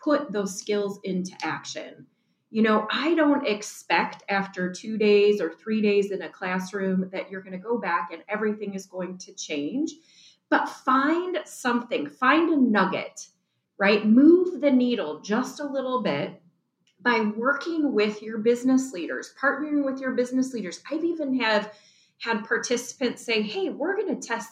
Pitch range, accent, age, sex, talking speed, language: 190-260 Hz, American, 30-49, female, 165 wpm, English